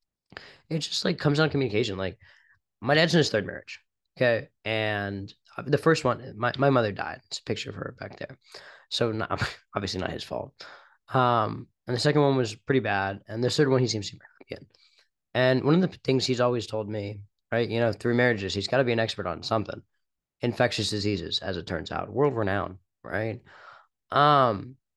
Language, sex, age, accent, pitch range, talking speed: English, male, 20-39, American, 100-130 Hz, 200 wpm